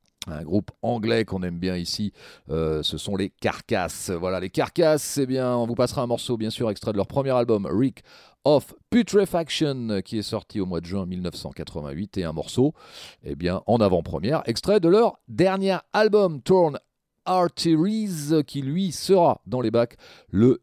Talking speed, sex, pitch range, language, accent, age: 175 wpm, male, 95-155 Hz, French, French, 40-59